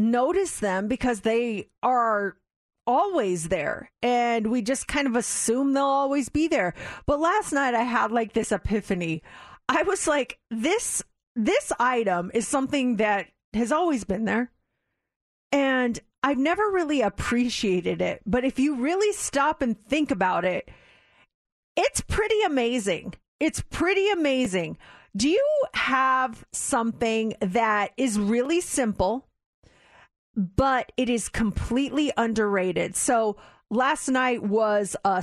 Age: 40-59